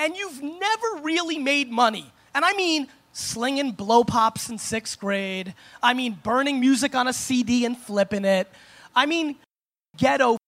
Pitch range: 250-320 Hz